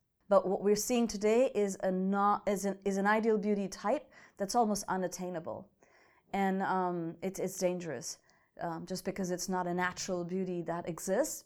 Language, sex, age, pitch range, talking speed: English, female, 30-49, 180-210 Hz, 175 wpm